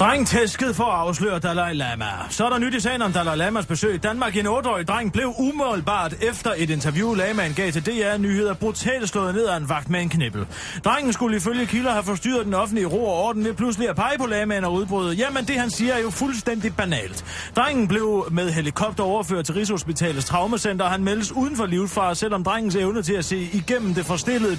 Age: 30-49